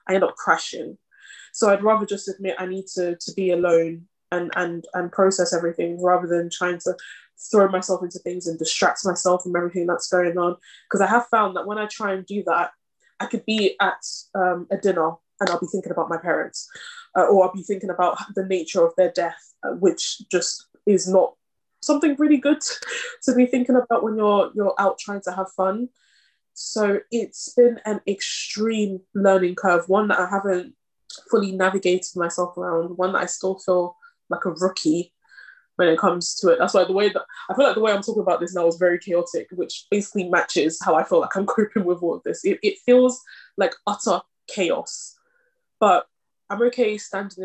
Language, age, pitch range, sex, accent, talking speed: English, 10-29, 175-220 Hz, female, British, 200 wpm